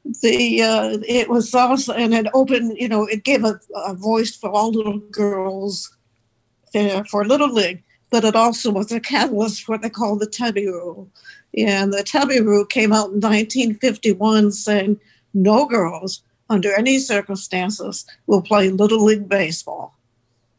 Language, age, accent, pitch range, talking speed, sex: English, 60-79, American, 195-230 Hz, 165 wpm, female